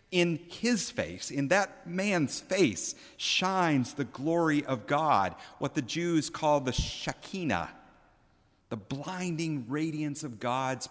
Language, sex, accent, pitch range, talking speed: English, male, American, 125-170 Hz, 125 wpm